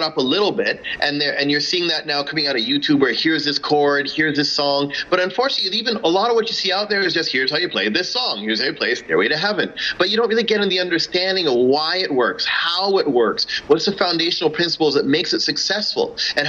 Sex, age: male, 30-49